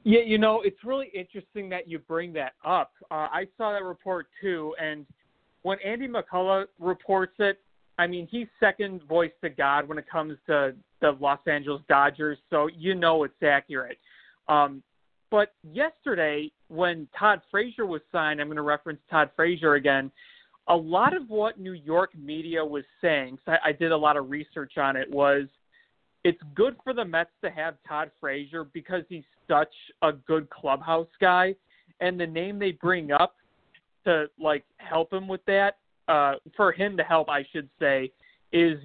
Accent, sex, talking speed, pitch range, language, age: American, male, 180 wpm, 150-185 Hz, English, 40-59